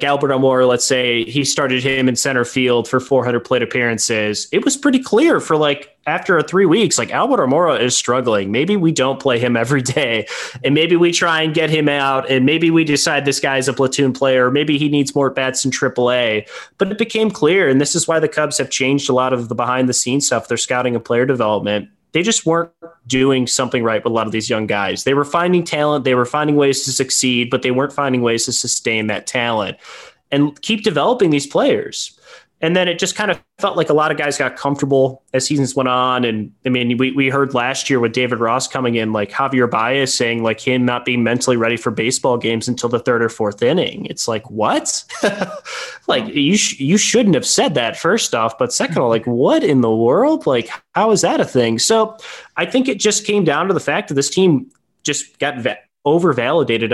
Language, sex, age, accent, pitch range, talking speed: English, male, 20-39, American, 120-150 Hz, 225 wpm